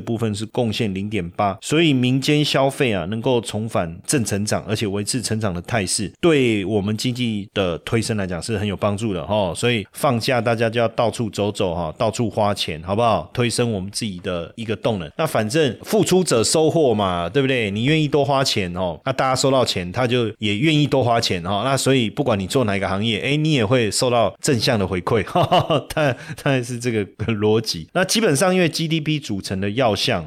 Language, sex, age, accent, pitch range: Chinese, male, 30-49, native, 100-130 Hz